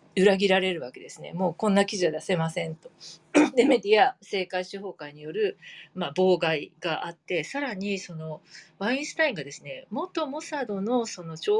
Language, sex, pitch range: Japanese, female, 165-240 Hz